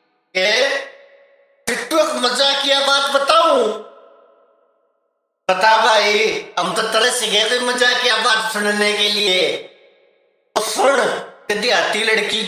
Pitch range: 205-245 Hz